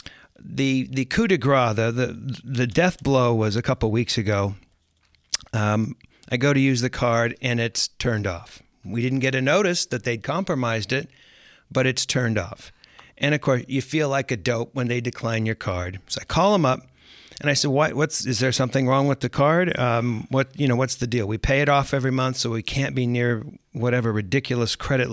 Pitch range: 115-135 Hz